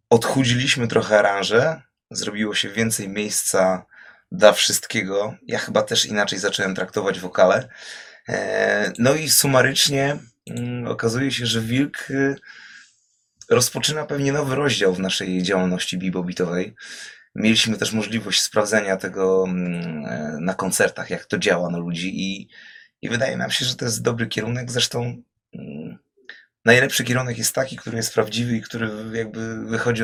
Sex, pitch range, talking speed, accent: male, 95-130 Hz, 130 wpm, native